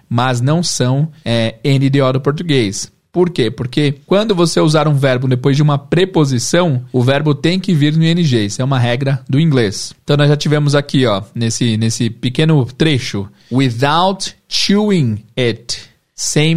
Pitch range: 125-160 Hz